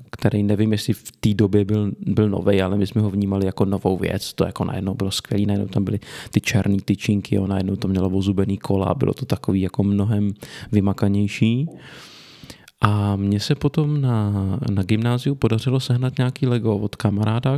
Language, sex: Czech, male